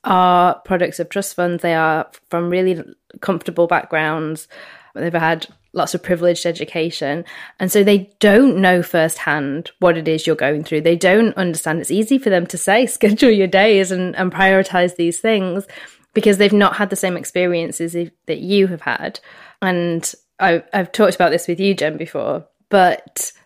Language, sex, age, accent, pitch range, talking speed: English, female, 20-39, British, 170-205 Hz, 170 wpm